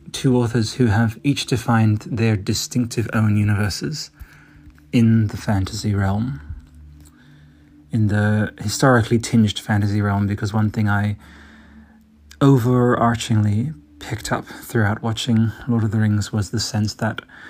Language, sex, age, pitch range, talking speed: English, male, 30-49, 105-120 Hz, 125 wpm